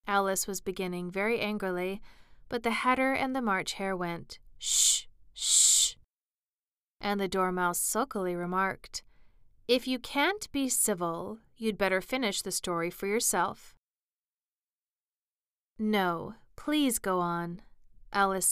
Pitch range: 180-230 Hz